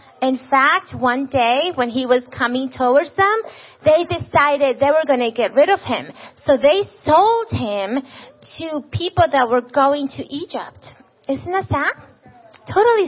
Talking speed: 160 wpm